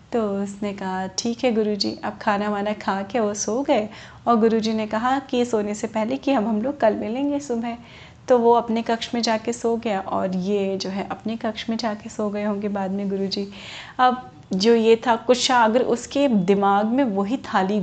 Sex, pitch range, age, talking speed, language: female, 200-240 Hz, 30-49, 210 wpm, Hindi